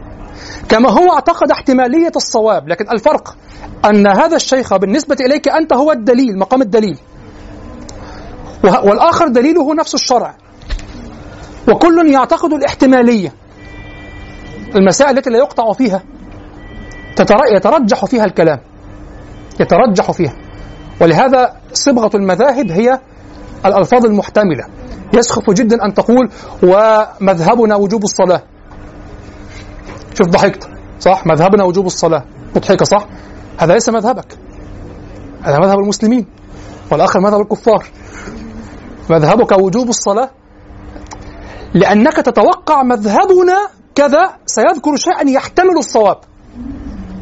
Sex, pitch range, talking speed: male, 155-260 Hz, 95 wpm